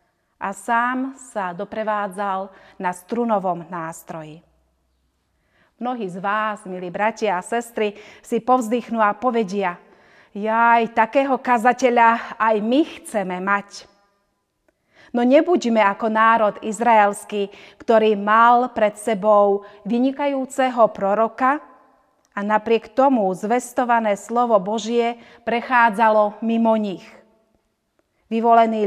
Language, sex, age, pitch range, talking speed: Slovak, female, 30-49, 200-235 Hz, 95 wpm